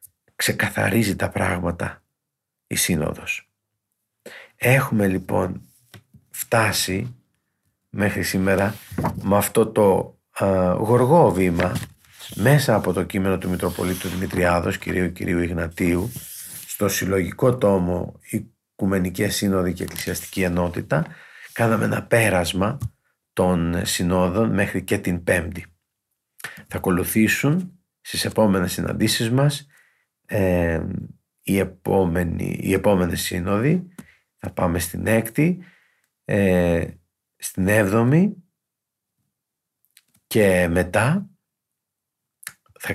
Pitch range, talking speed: 90-110 Hz, 90 wpm